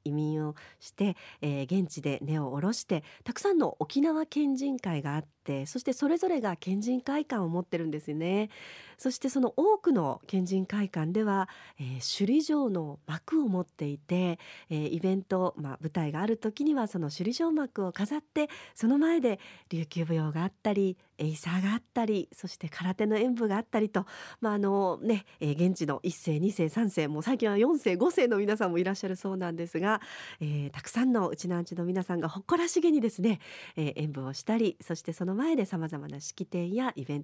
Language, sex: Japanese, female